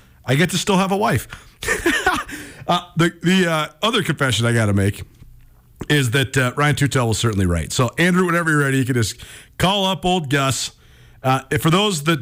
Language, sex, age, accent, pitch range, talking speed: English, male, 40-59, American, 120-165 Hz, 200 wpm